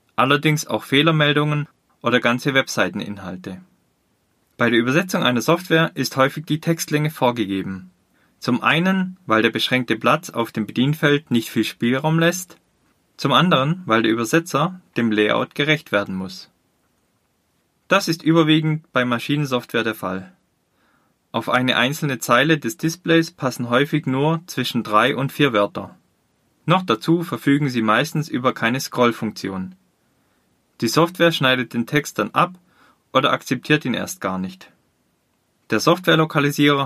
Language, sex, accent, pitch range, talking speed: German, male, German, 115-155 Hz, 135 wpm